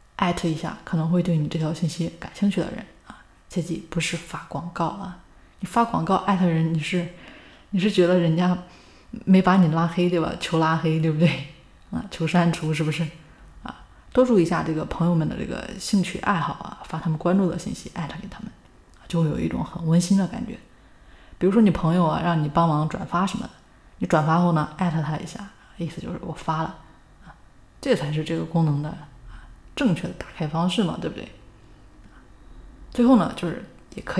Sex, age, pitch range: female, 20-39, 160-190 Hz